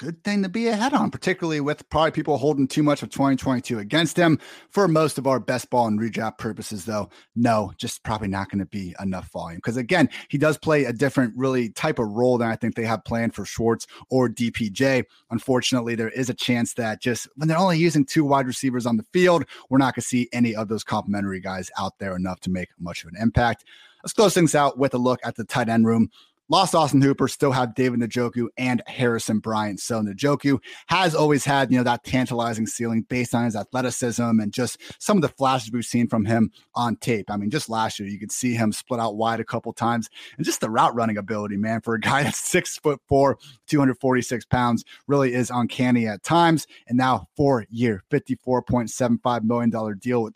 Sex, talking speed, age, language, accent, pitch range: male, 220 wpm, 30-49, English, American, 110-140 Hz